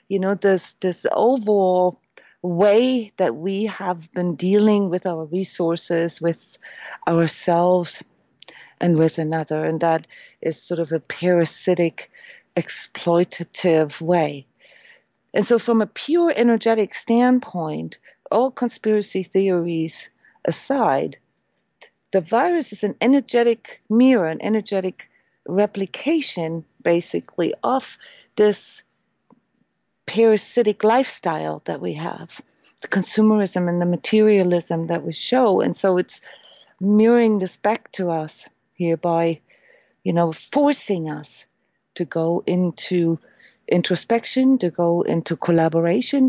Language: English